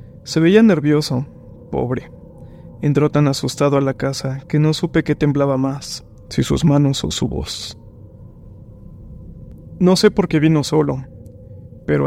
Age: 20-39